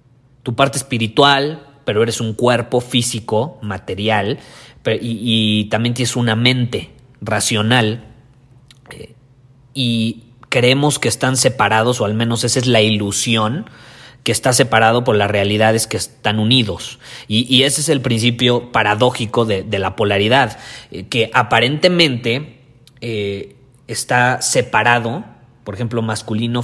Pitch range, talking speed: 110-130 Hz, 130 wpm